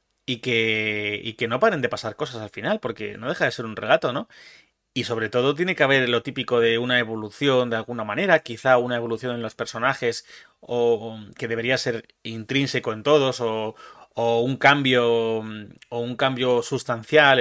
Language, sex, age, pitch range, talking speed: Spanish, male, 30-49, 115-135 Hz, 185 wpm